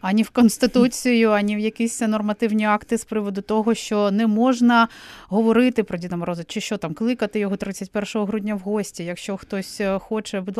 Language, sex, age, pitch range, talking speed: Ukrainian, female, 30-49, 195-230 Hz, 175 wpm